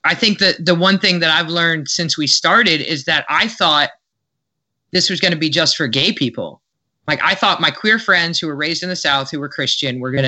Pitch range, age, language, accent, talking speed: 140-175 Hz, 30-49, English, American, 245 wpm